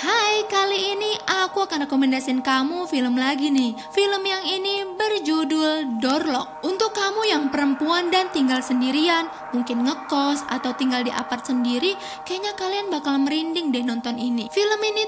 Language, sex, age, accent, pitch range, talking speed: Indonesian, female, 20-39, native, 265-365 Hz, 150 wpm